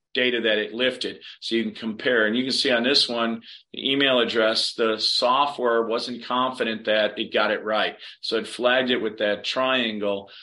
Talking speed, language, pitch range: 195 wpm, English, 110-125 Hz